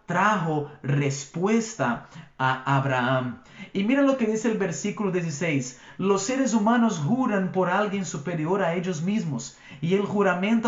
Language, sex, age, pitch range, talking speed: Spanish, male, 40-59, 160-215 Hz, 140 wpm